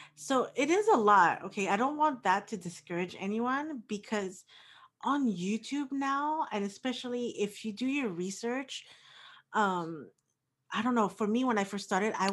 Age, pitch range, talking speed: 30-49, 180-225 Hz, 170 wpm